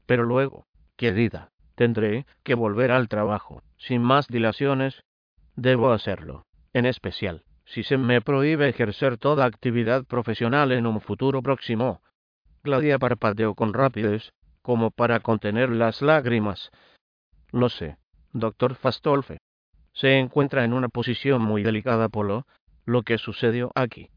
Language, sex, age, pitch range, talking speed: Spanish, male, 50-69, 110-130 Hz, 130 wpm